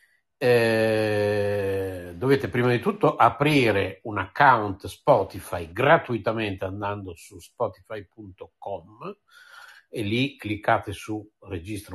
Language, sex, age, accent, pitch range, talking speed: Italian, male, 60-79, native, 95-125 Hz, 90 wpm